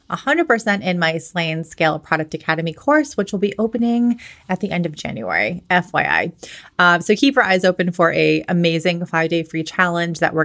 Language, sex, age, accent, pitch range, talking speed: English, female, 30-49, American, 165-205 Hz, 180 wpm